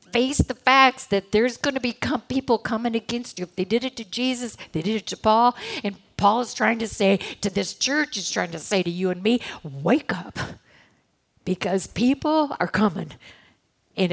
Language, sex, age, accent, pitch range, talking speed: English, female, 50-69, American, 190-245 Hz, 200 wpm